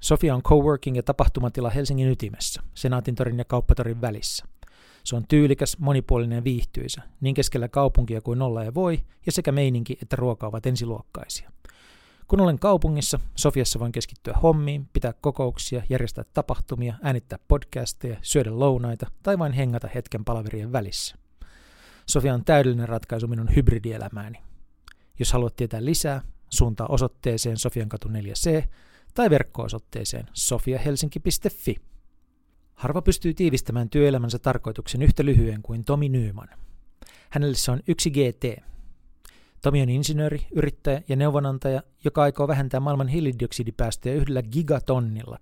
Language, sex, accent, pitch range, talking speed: Finnish, male, native, 115-145 Hz, 130 wpm